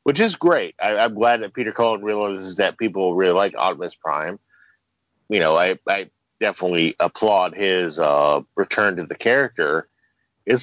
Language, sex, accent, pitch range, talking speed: English, male, American, 105-150 Hz, 165 wpm